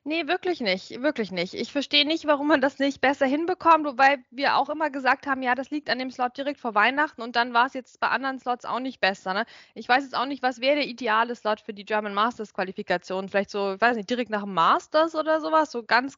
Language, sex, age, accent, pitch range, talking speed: German, female, 20-39, German, 220-295 Hz, 250 wpm